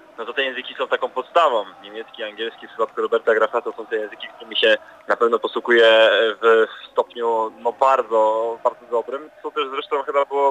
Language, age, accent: Polish, 20-39, native